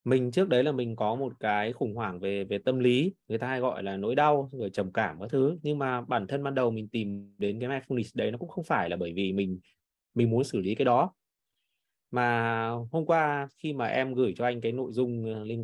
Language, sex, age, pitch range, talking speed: Vietnamese, male, 20-39, 110-140 Hz, 250 wpm